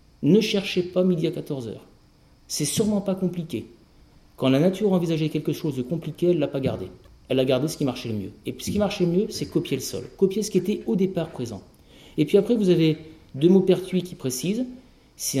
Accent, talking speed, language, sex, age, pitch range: French, 235 wpm, French, male, 50-69, 130-185 Hz